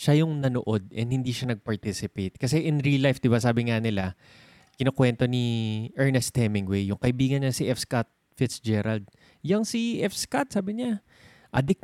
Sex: male